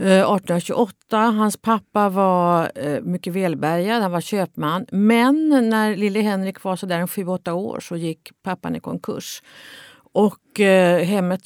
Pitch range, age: 165-210 Hz, 50-69